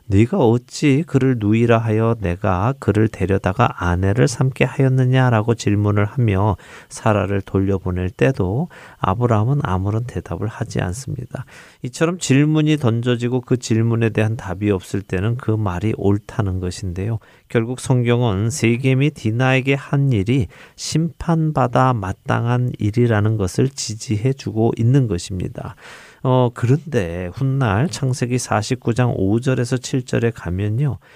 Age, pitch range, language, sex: 40-59, 105-130 Hz, Korean, male